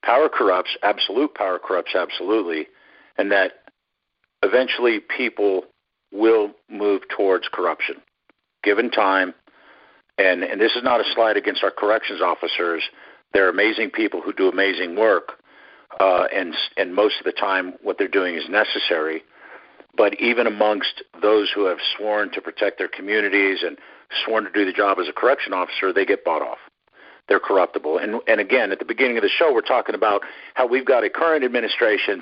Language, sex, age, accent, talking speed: English, male, 50-69, American, 170 wpm